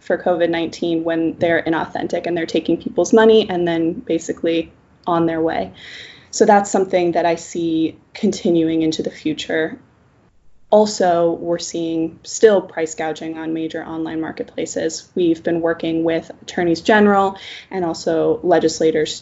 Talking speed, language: 140 wpm, English